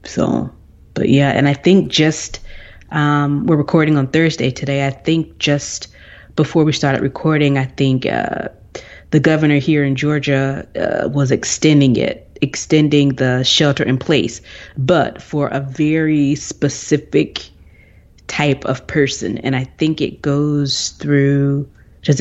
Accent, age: American, 30-49